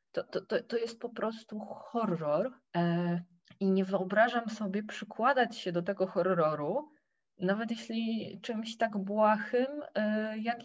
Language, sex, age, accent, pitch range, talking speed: Polish, female, 20-39, native, 170-215 Hz, 125 wpm